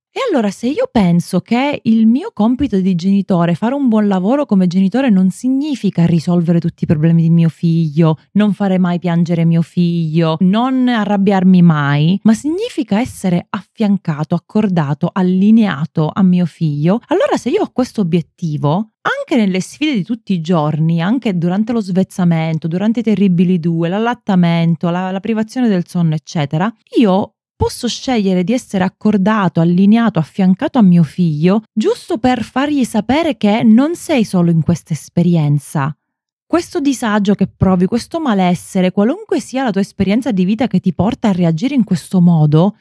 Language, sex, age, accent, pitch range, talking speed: Italian, female, 30-49, native, 170-230 Hz, 160 wpm